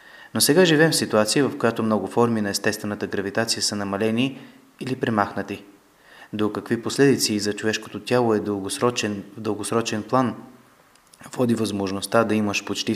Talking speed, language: 145 wpm, Bulgarian